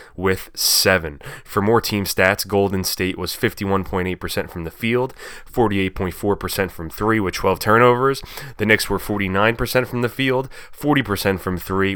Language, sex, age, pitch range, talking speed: English, male, 20-39, 95-110 Hz, 145 wpm